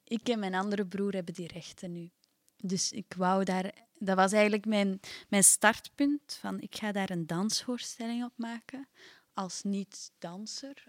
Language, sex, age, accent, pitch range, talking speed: Dutch, female, 20-39, Dutch, 185-220 Hz, 165 wpm